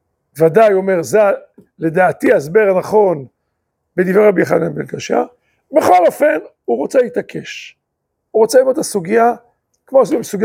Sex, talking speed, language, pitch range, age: male, 130 wpm, Hebrew, 185-280 Hz, 50-69